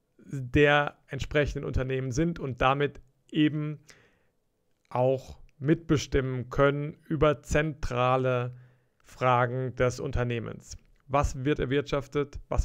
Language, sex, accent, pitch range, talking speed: German, male, German, 130-150 Hz, 90 wpm